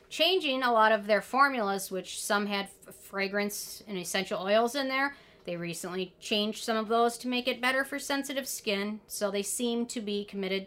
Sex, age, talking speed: female, 40-59, 190 wpm